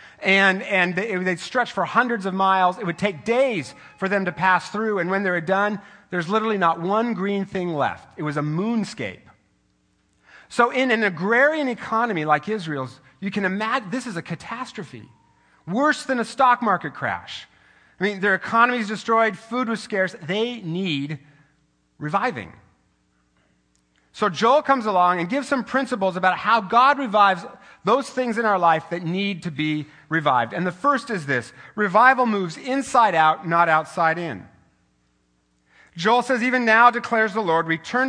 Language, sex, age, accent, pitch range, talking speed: English, male, 40-59, American, 170-235 Hz, 165 wpm